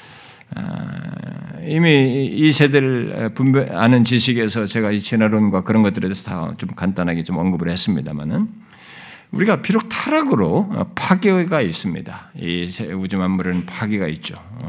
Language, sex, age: Korean, male, 50-69